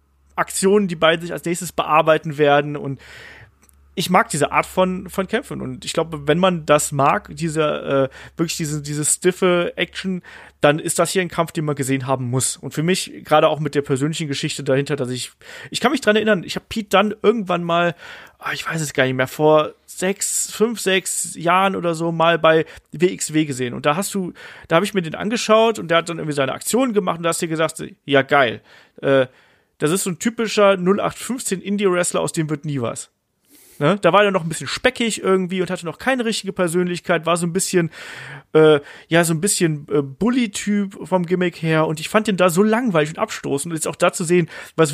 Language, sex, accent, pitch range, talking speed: German, male, German, 150-190 Hz, 220 wpm